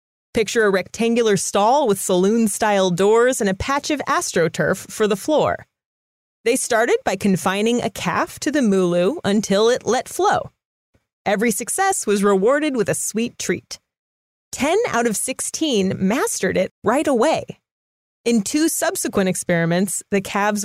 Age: 30-49